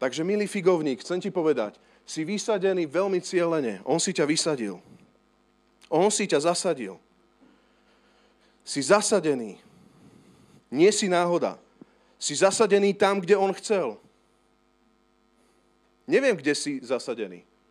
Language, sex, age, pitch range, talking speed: Slovak, male, 40-59, 140-200 Hz, 110 wpm